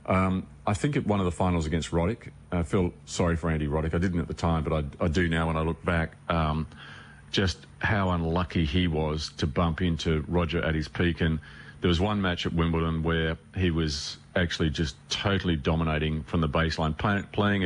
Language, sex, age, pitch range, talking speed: English, male, 40-59, 80-90 Hz, 205 wpm